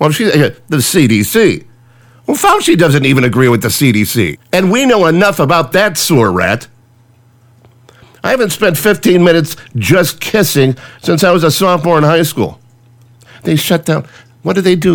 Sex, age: male, 50-69